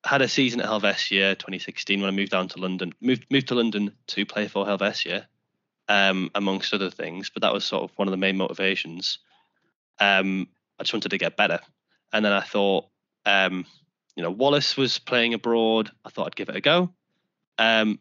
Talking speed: 200 wpm